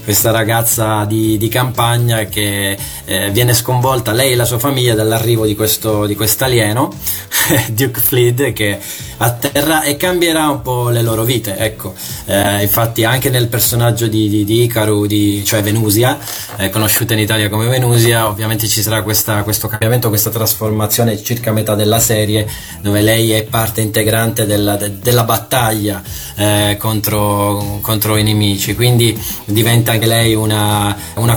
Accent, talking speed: native, 155 wpm